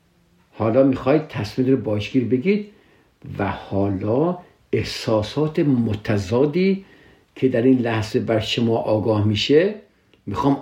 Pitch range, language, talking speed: 115-150 Hz, Persian, 105 wpm